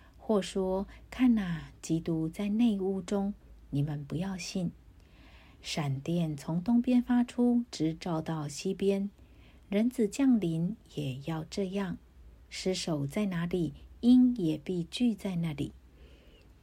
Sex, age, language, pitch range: female, 50-69, Chinese, 155-205 Hz